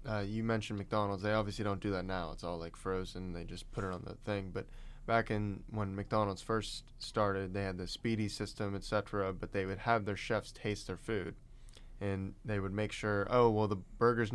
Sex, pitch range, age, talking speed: male, 95-110 Hz, 10-29, 220 wpm